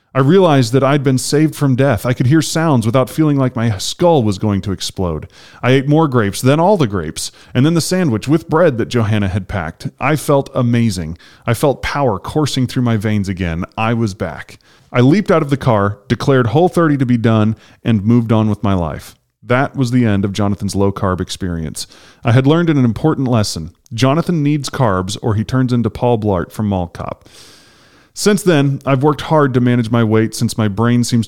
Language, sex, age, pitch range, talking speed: English, male, 30-49, 105-140 Hz, 210 wpm